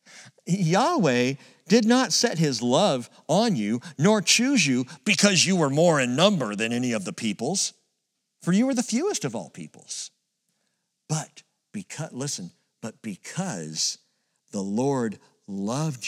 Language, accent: English, American